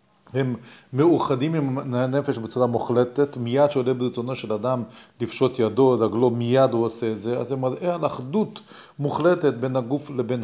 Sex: male